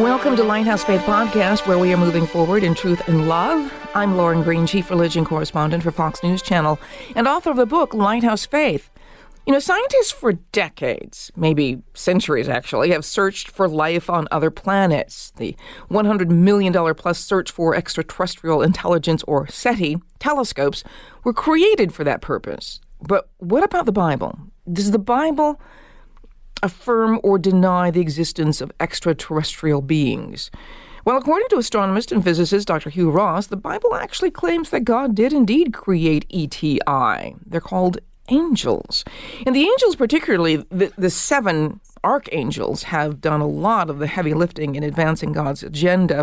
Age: 50-69